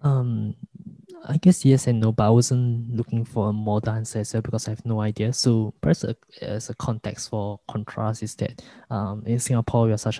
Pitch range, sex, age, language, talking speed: 105-120 Hz, male, 20-39, English, 210 wpm